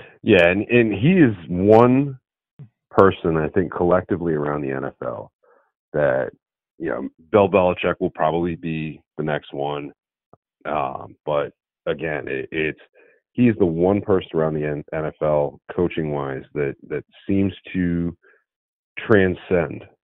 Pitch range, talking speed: 75-90 Hz, 125 wpm